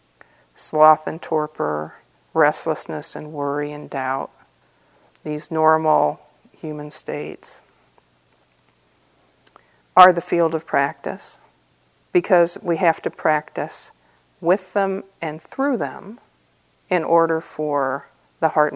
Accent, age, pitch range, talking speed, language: American, 50-69, 155-200 Hz, 100 wpm, English